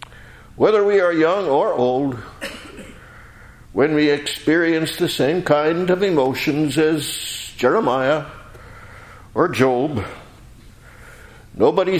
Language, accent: English, American